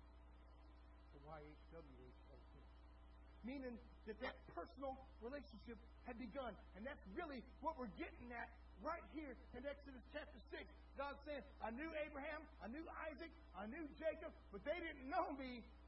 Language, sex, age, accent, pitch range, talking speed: English, male, 50-69, American, 225-310 Hz, 135 wpm